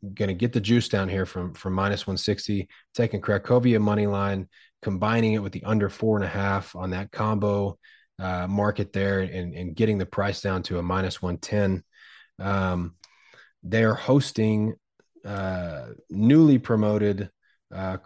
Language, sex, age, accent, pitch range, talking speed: English, male, 30-49, American, 95-110 Hz, 165 wpm